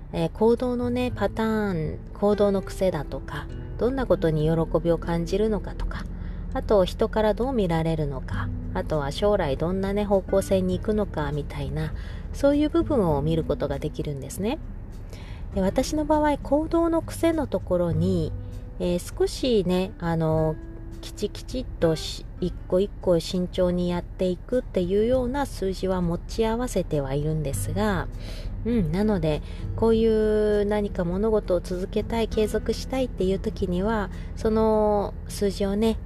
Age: 30-49